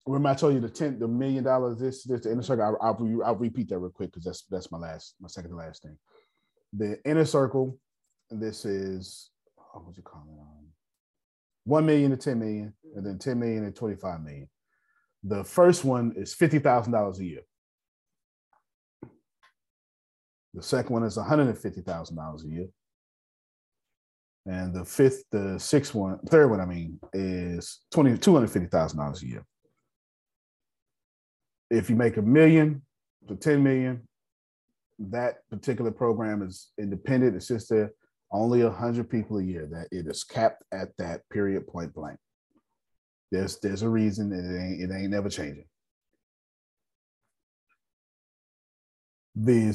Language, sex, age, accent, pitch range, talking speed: English, male, 30-49, American, 85-120 Hz, 155 wpm